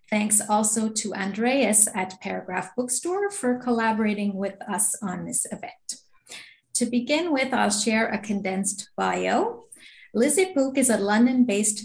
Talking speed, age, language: 135 wpm, 30-49, English